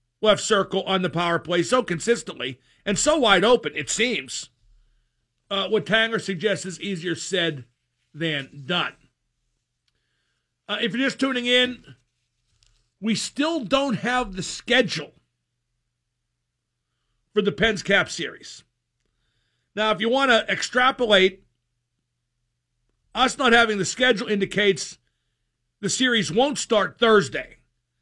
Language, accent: English, American